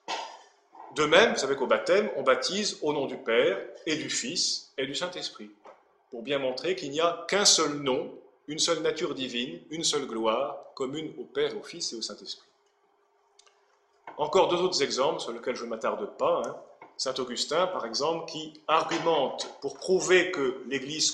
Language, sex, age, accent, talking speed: French, male, 30-49, French, 180 wpm